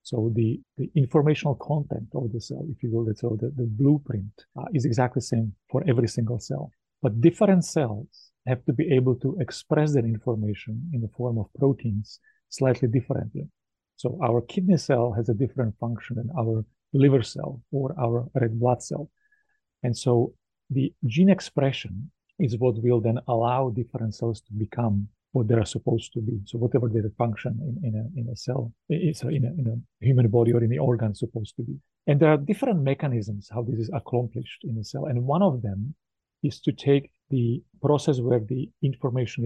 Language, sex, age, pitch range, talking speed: English, male, 40-59, 115-140 Hz, 195 wpm